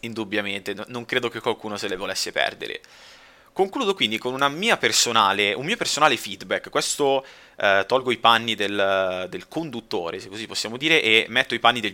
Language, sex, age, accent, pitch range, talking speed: Italian, male, 30-49, native, 105-130 Hz, 180 wpm